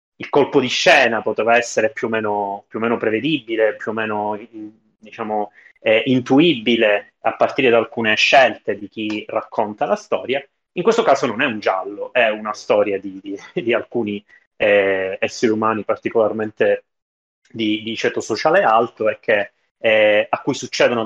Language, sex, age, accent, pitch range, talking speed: Italian, male, 30-49, native, 105-135 Hz, 165 wpm